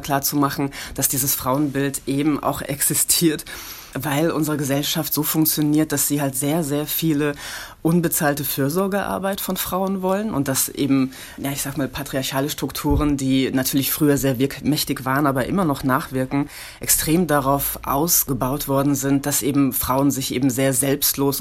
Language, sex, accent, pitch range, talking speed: German, female, German, 130-150 Hz, 150 wpm